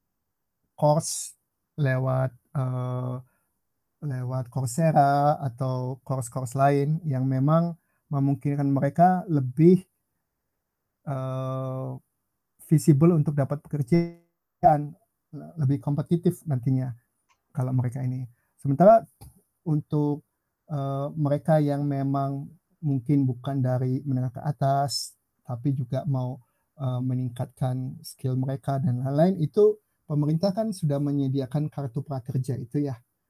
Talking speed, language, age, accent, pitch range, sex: 100 wpm, Indonesian, 50-69, native, 130-155 Hz, male